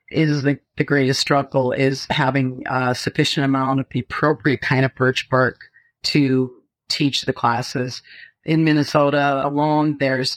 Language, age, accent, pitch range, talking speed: English, 50-69, American, 130-150 Hz, 145 wpm